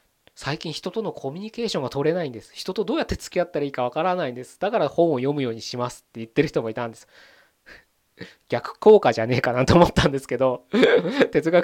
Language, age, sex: Japanese, 20-39, male